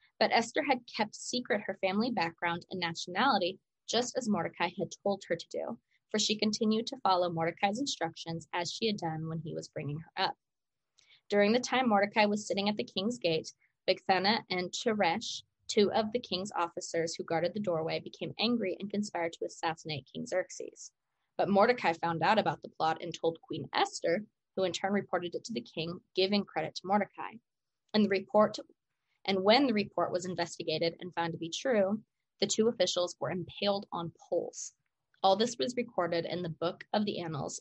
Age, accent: 20-39, American